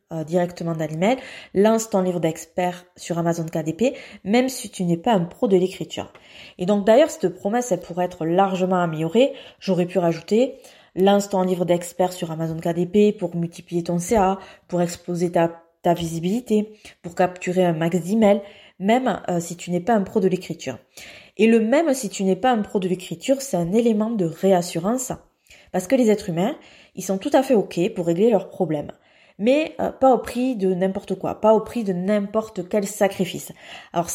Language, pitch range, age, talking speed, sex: French, 175-215 Hz, 20-39, 195 wpm, female